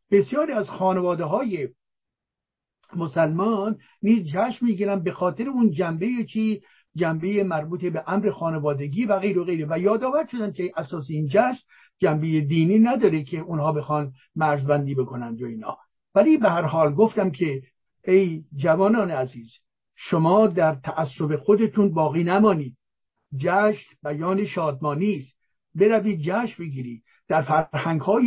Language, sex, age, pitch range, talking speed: English, male, 60-79, 155-210 Hz, 140 wpm